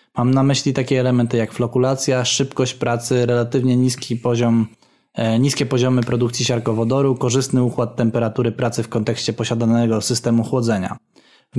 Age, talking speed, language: 20-39, 125 wpm, Polish